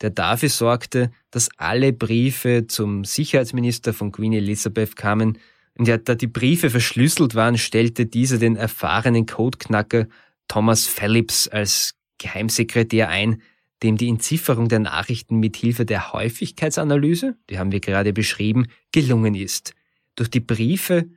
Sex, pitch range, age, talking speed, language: male, 105-130 Hz, 20-39, 135 wpm, German